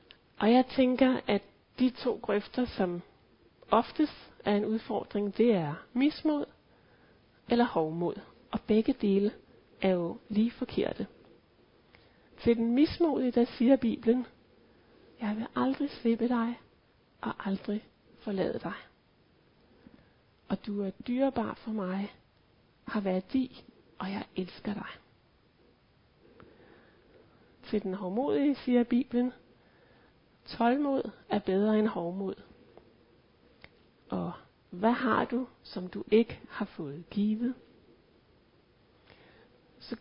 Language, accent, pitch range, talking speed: Danish, native, 205-255 Hz, 110 wpm